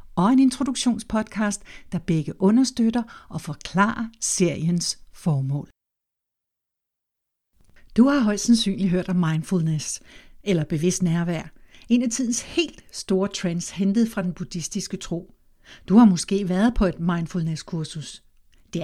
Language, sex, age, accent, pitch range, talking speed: Danish, female, 60-79, native, 170-215 Hz, 125 wpm